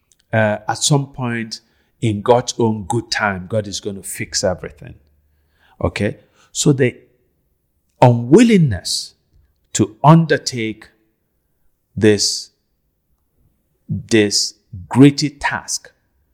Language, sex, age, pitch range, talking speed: English, male, 50-69, 90-115 Hz, 90 wpm